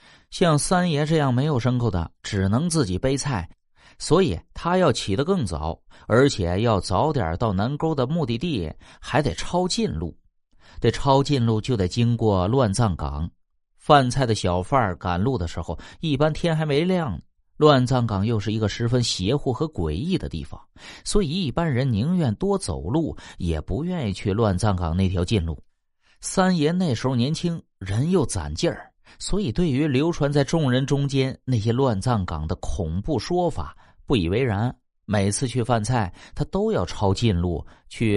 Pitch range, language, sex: 95-145 Hz, Chinese, male